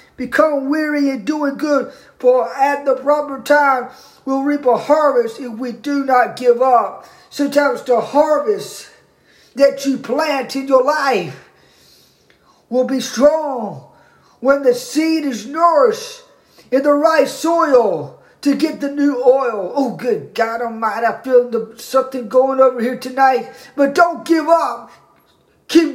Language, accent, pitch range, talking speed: English, American, 245-300 Hz, 145 wpm